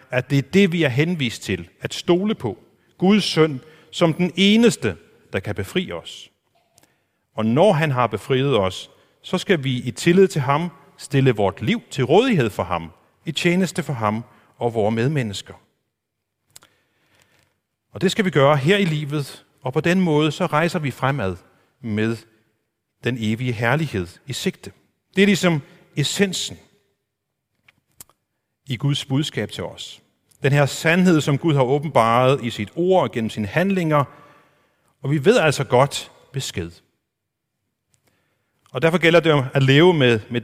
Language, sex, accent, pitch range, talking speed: Danish, male, native, 115-160 Hz, 155 wpm